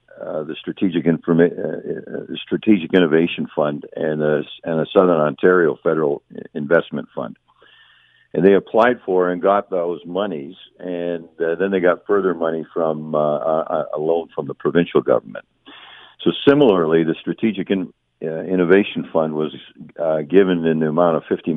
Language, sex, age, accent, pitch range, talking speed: English, male, 50-69, American, 80-95 Hz, 155 wpm